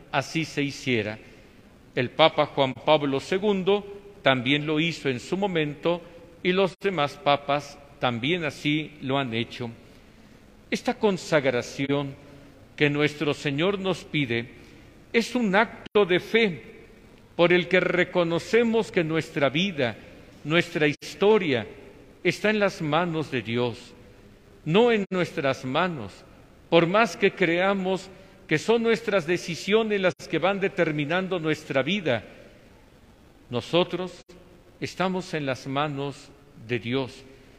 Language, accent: Spanish, Mexican